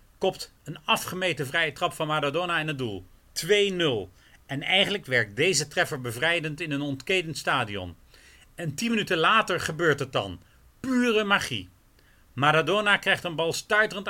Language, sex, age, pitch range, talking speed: Dutch, male, 40-59, 135-180 Hz, 150 wpm